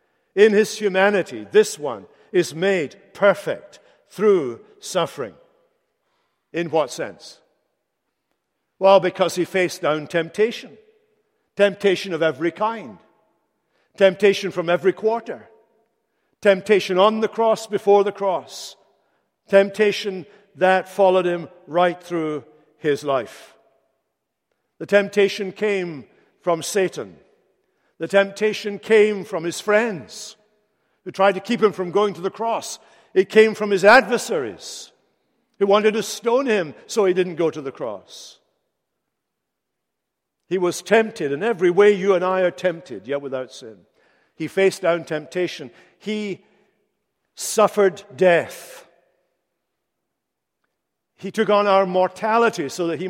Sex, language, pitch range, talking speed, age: male, English, 180-215 Hz, 125 wpm, 50-69